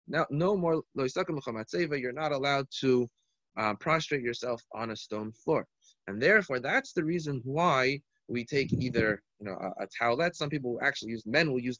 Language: English